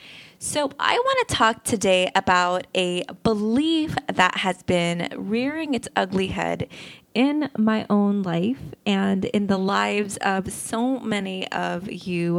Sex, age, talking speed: female, 20-39, 140 wpm